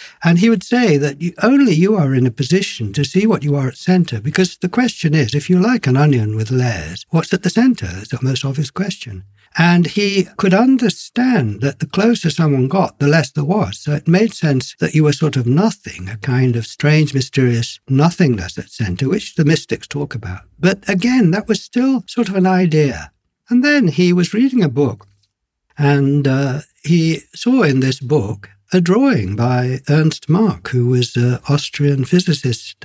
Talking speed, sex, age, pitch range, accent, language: 195 wpm, male, 60-79, 120-180 Hz, British, English